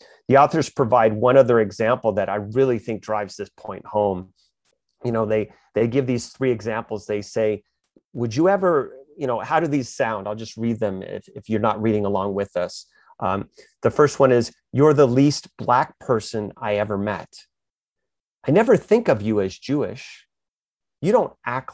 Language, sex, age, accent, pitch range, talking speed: English, male, 30-49, American, 110-140 Hz, 190 wpm